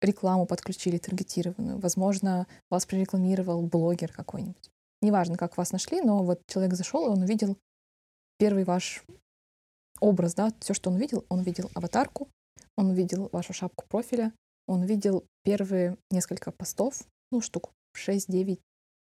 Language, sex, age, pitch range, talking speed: Russian, female, 20-39, 180-210 Hz, 135 wpm